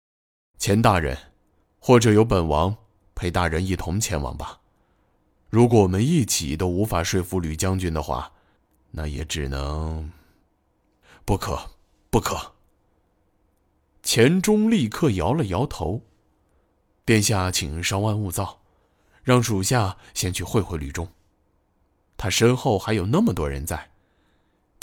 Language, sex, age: Chinese, male, 20-39